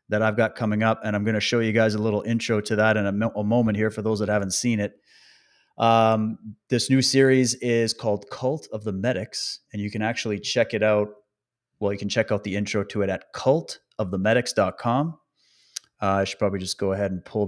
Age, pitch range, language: 30-49, 105-125 Hz, English